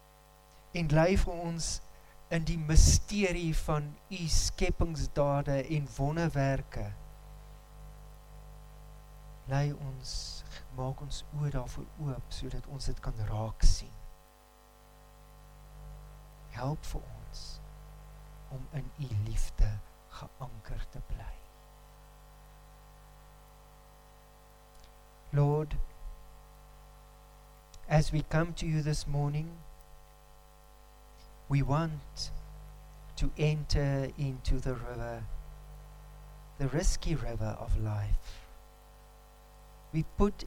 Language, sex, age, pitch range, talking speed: English, male, 50-69, 115-150 Hz, 85 wpm